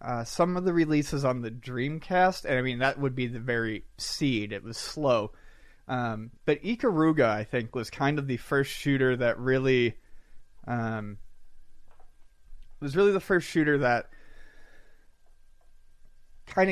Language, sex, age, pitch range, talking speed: English, male, 30-49, 115-135 Hz, 145 wpm